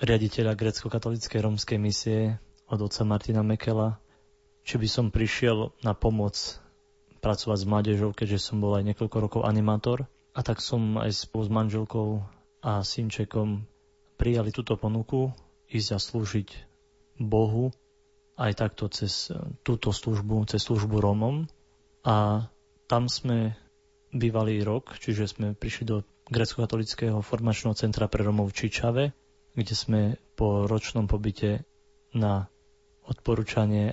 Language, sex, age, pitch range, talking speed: Slovak, male, 20-39, 105-115 Hz, 125 wpm